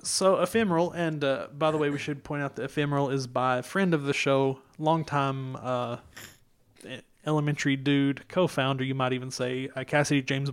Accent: American